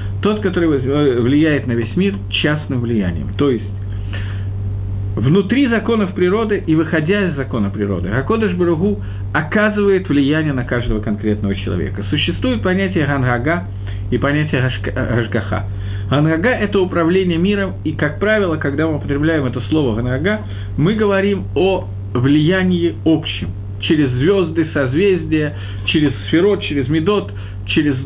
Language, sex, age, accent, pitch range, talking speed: Russian, male, 50-69, native, 100-160 Hz, 125 wpm